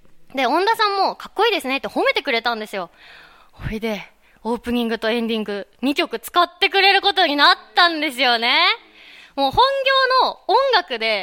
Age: 20-39